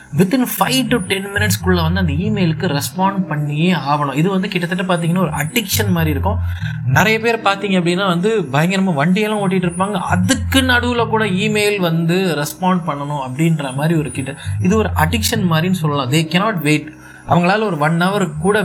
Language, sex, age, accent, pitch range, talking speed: Tamil, male, 20-39, native, 130-175 Hz, 165 wpm